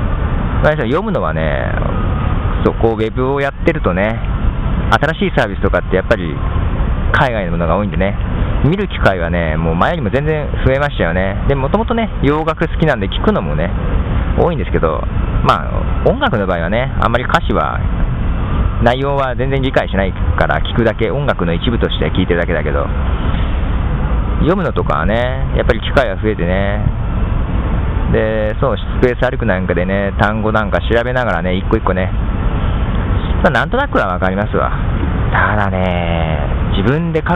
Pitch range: 90-115 Hz